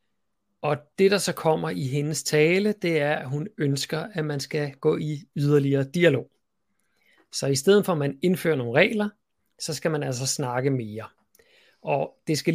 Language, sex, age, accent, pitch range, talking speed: Danish, male, 30-49, native, 140-170 Hz, 180 wpm